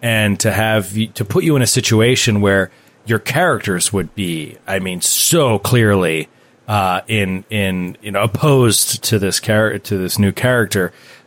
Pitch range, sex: 105-145 Hz, male